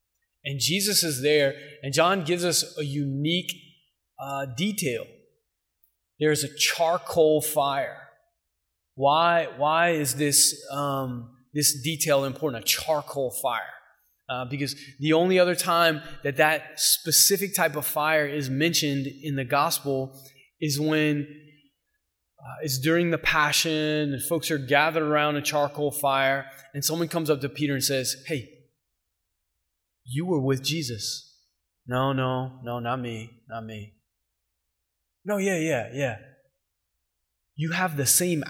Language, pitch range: English, 120-155 Hz